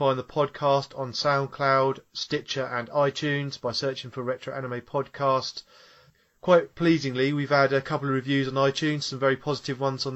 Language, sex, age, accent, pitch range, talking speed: English, male, 30-49, British, 125-140 Hz, 170 wpm